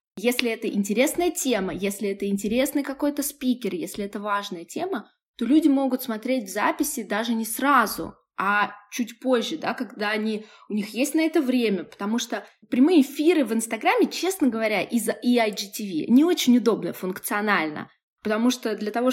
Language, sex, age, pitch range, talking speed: Russian, female, 20-39, 205-270 Hz, 165 wpm